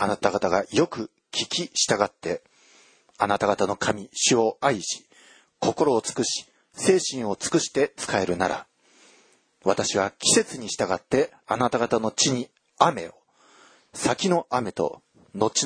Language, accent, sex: Japanese, native, male